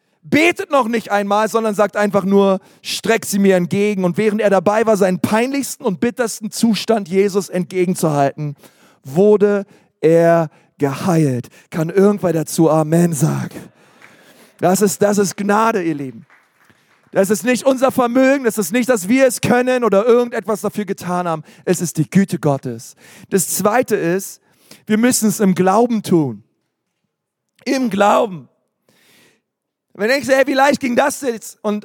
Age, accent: 40-59, German